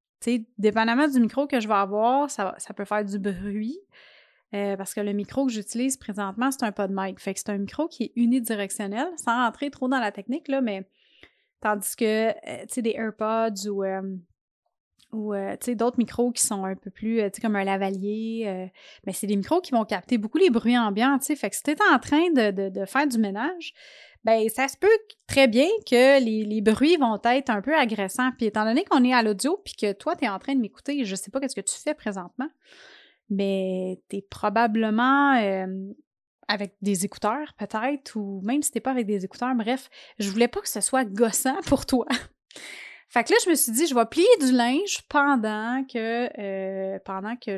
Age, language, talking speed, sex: 30-49, French, 215 wpm, female